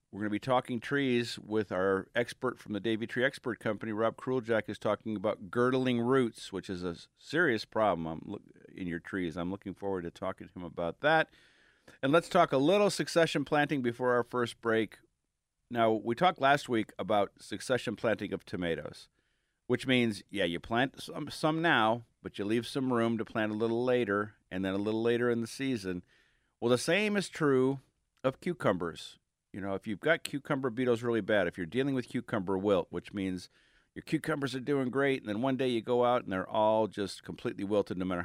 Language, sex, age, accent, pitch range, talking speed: English, male, 50-69, American, 100-130 Hz, 205 wpm